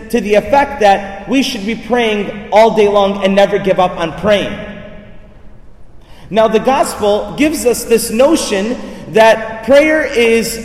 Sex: male